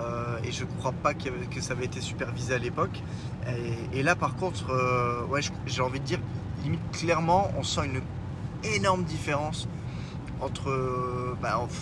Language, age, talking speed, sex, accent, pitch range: French, 20-39, 155 wpm, male, French, 120-145 Hz